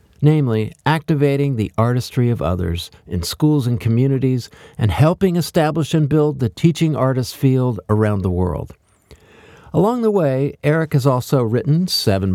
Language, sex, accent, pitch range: English, male, American, 105-150 Hz